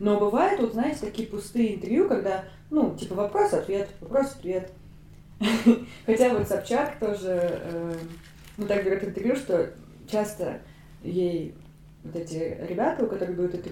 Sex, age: female, 20-39